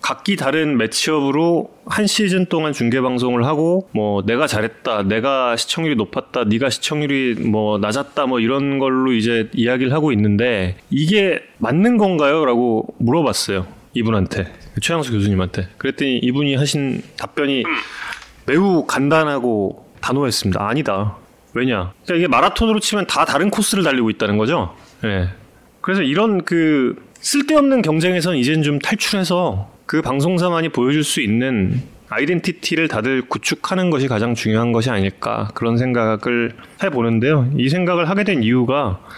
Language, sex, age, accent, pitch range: Korean, male, 30-49, native, 110-160 Hz